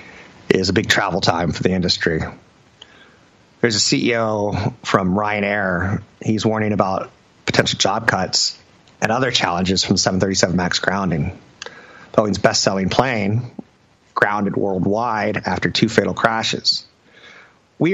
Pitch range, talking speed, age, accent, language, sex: 95-110 Hz, 120 wpm, 30-49, American, English, male